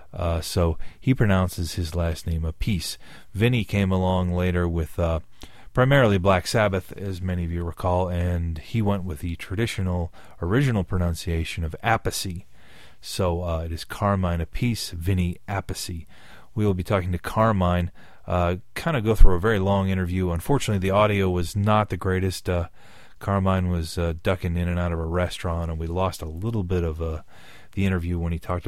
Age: 30-49